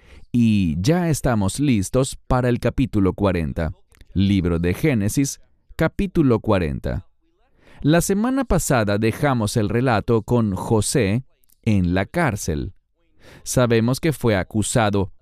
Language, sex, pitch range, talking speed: English, male, 95-135 Hz, 110 wpm